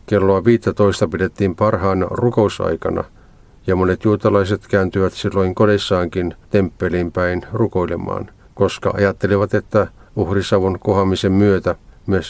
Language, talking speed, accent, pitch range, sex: Finnish, 100 wpm, native, 90-105 Hz, male